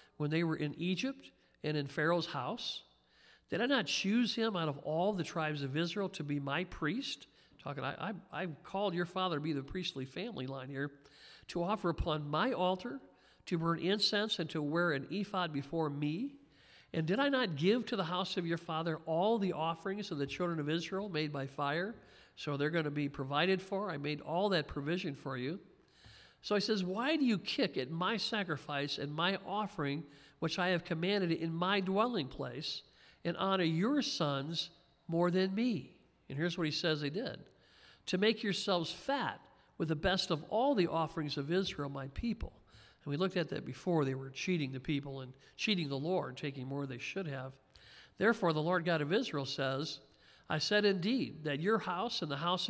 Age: 50-69